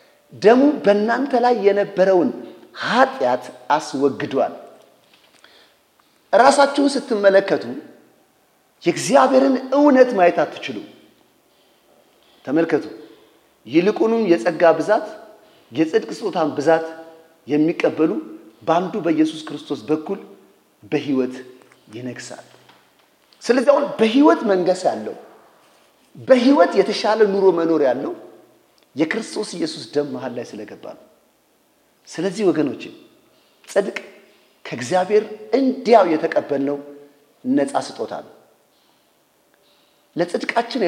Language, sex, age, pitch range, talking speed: English, male, 40-59, 155-250 Hz, 75 wpm